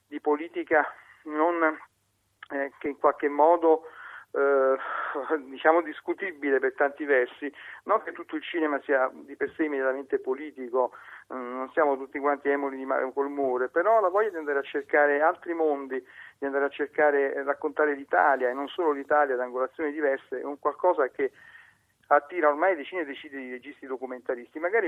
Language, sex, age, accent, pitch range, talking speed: Italian, male, 40-59, native, 135-160 Hz, 165 wpm